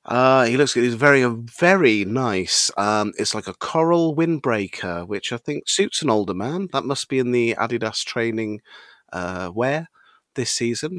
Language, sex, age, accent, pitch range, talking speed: English, male, 30-49, British, 105-135 Hz, 170 wpm